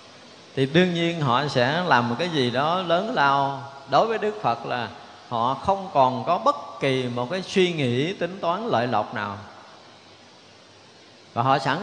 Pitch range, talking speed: 120-165 Hz, 180 wpm